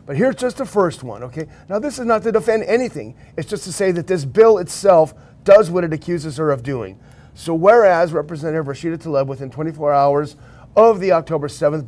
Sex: male